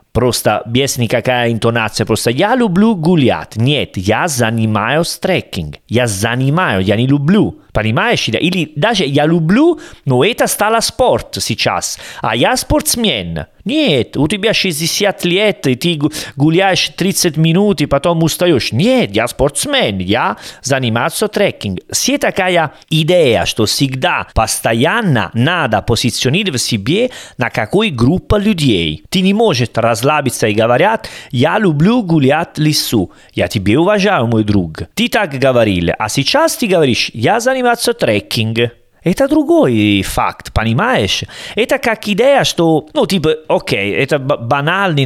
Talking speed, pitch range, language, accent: 135 wpm, 125-195 Hz, Russian, Italian